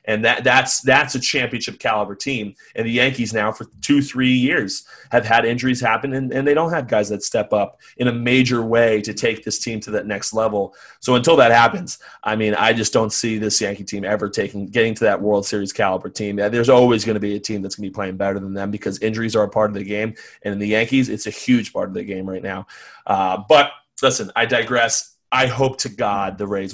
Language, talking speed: English, 240 wpm